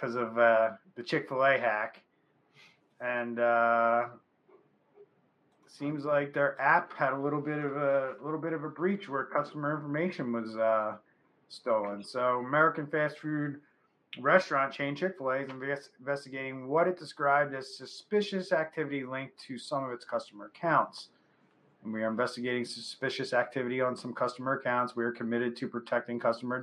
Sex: male